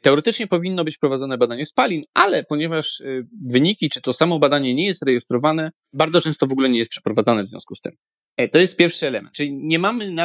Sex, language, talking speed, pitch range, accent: male, Polish, 205 wpm, 130-175 Hz, native